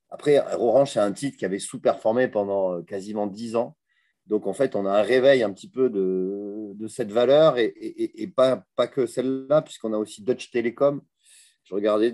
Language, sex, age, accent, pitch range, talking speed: French, male, 30-49, French, 95-125 Hz, 200 wpm